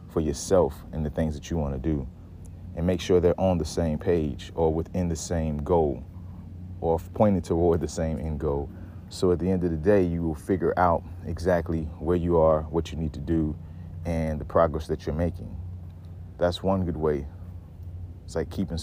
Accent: American